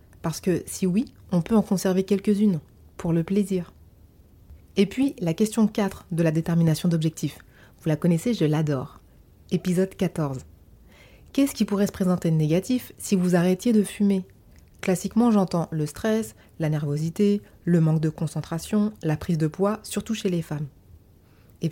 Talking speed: 165 wpm